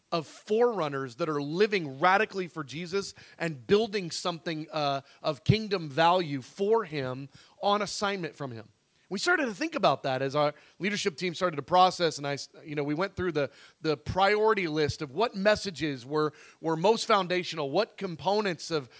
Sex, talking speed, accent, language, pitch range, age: male, 175 wpm, American, English, 150-210 Hz, 30-49